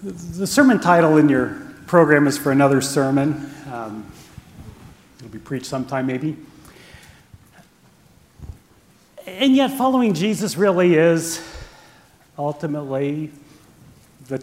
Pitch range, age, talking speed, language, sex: 145-180 Hz, 40-59, 100 wpm, English, male